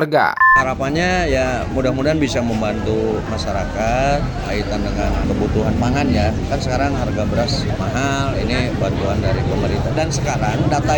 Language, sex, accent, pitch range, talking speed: Indonesian, male, native, 110-145 Hz, 120 wpm